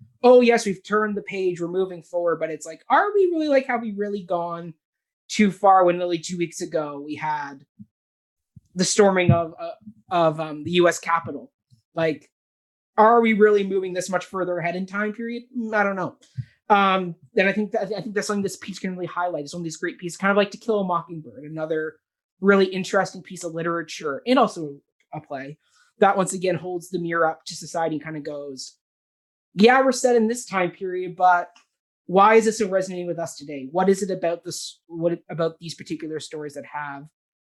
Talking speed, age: 205 wpm, 20-39